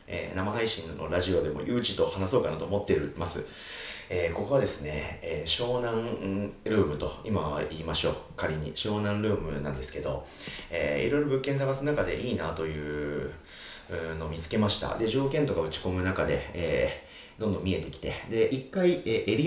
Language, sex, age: Japanese, male, 40-59